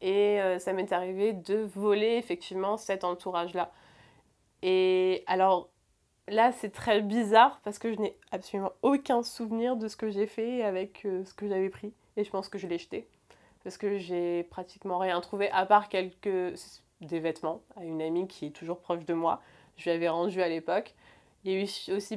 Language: French